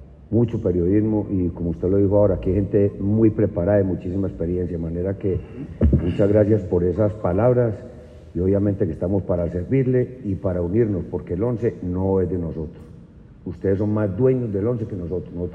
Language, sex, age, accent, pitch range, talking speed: Spanish, male, 50-69, Spanish, 90-110 Hz, 190 wpm